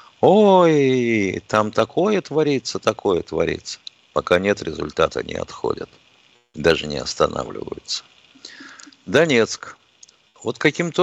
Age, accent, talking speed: 50-69, native, 90 wpm